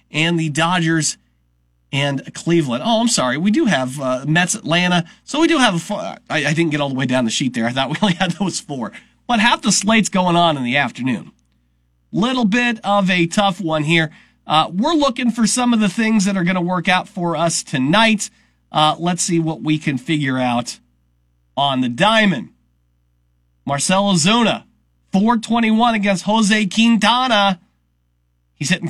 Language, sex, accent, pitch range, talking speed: English, male, American, 150-215 Hz, 185 wpm